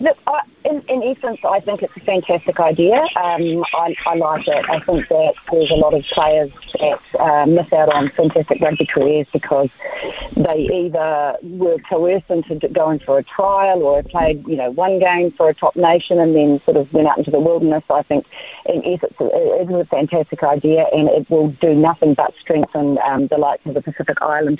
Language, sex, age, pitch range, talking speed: English, female, 40-59, 150-185 Hz, 205 wpm